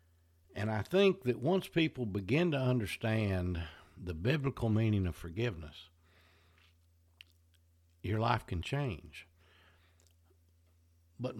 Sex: male